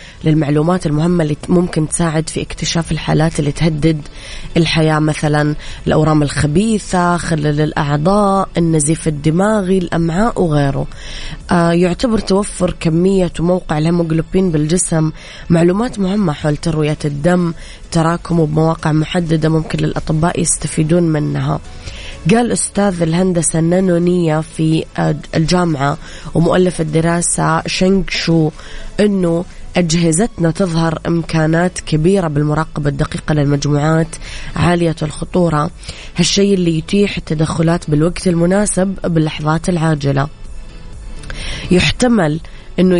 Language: Arabic